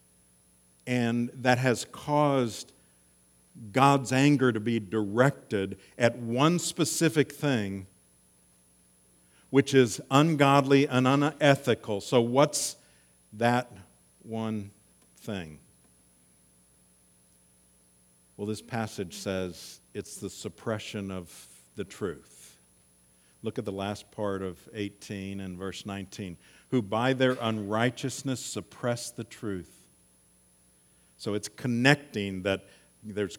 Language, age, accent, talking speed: English, 50-69, American, 100 wpm